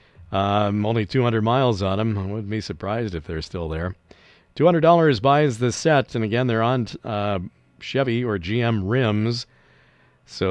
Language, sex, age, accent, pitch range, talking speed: English, male, 50-69, American, 95-120 Hz, 160 wpm